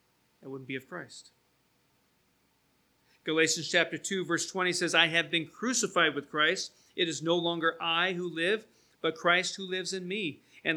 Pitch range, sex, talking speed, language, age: 145-190 Hz, male, 175 wpm, English, 40-59